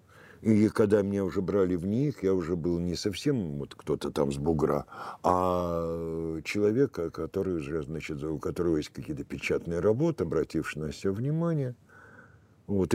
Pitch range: 90-125 Hz